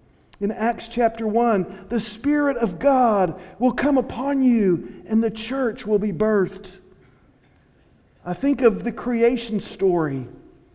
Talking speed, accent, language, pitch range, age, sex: 135 wpm, American, English, 190-255 Hz, 50-69, male